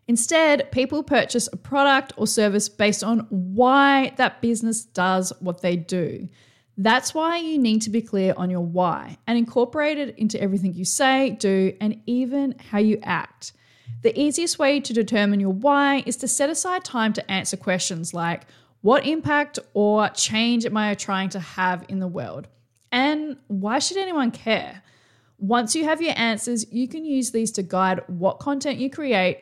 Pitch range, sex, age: 190-265 Hz, female, 20-39